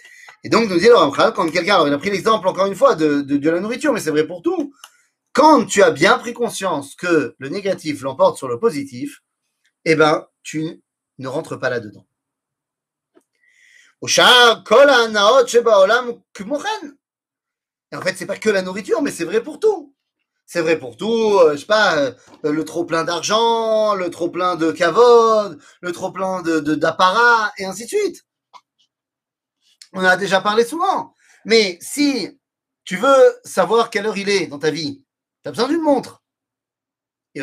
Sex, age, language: male, 30-49, French